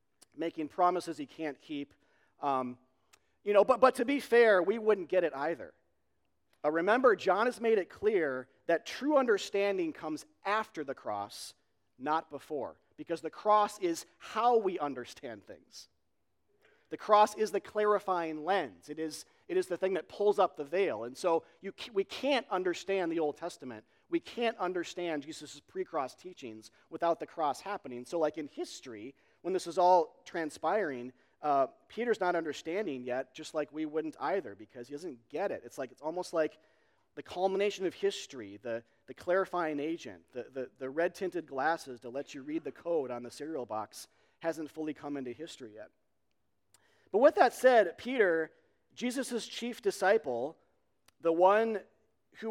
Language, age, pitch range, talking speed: English, 40-59, 150-210 Hz, 170 wpm